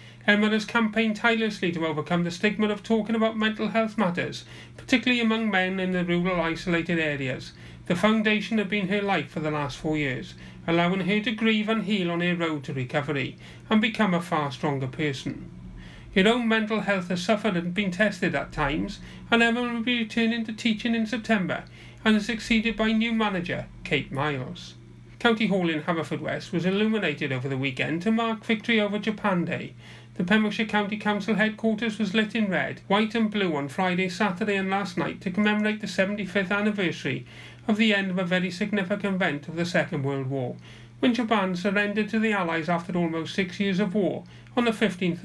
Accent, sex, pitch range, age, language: British, male, 155-220 Hz, 40-59, Japanese